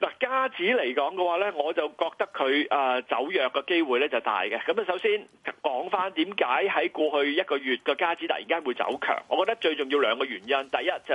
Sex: male